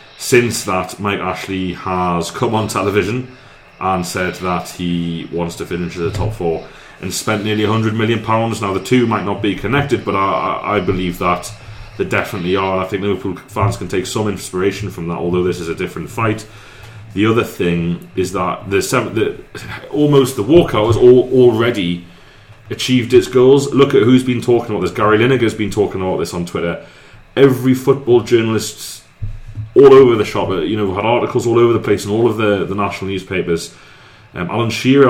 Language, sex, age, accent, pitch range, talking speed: English, male, 30-49, British, 95-120 Hz, 195 wpm